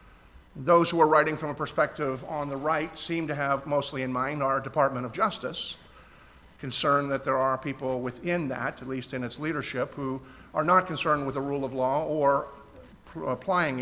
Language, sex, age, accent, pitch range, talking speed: English, male, 50-69, American, 130-155 Hz, 185 wpm